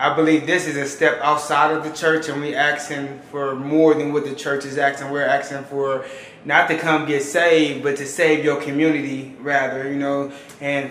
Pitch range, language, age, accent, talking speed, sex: 145-160 Hz, English, 20-39, American, 210 wpm, male